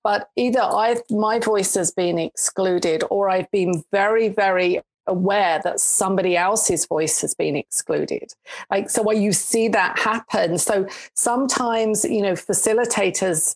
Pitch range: 180-220 Hz